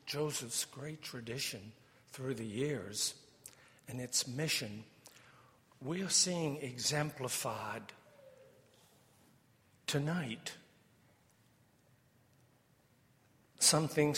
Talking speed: 65 wpm